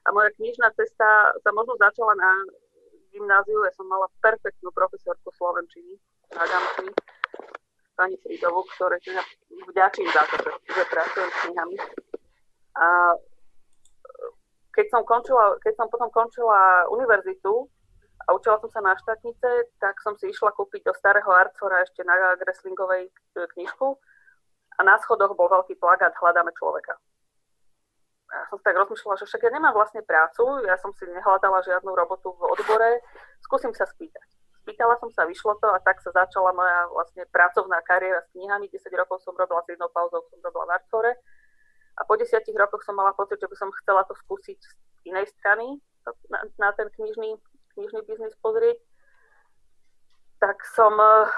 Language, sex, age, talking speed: Slovak, female, 30-49, 155 wpm